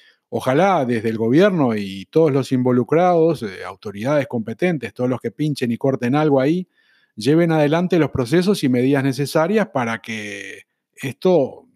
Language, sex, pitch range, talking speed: Spanish, male, 115-160 Hz, 150 wpm